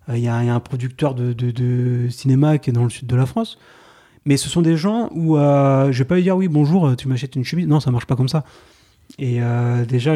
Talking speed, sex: 295 wpm, male